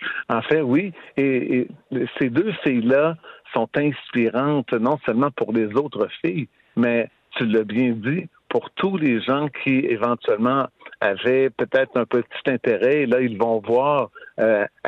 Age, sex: 60-79, male